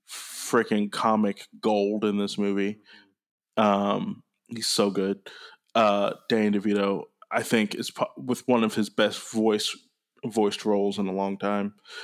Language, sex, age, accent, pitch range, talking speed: English, male, 20-39, American, 100-110 Hz, 145 wpm